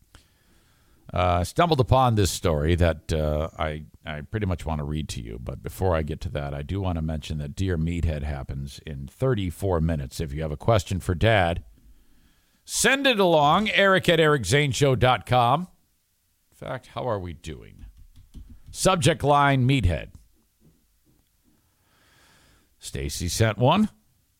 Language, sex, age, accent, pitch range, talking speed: English, male, 50-69, American, 85-135 Hz, 150 wpm